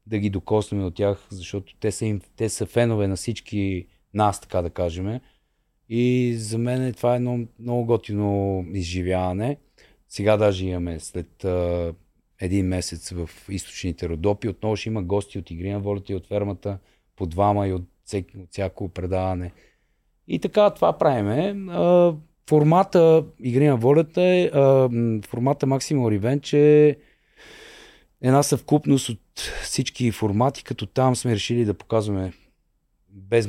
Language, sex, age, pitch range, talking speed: Bulgarian, male, 30-49, 95-125 Hz, 140 wpm